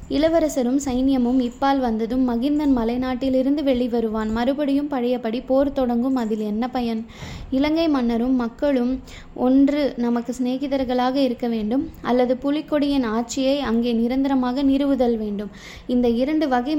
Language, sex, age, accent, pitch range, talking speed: Tamil, female, 20-39, native, 240-275 Hz, 115 wpm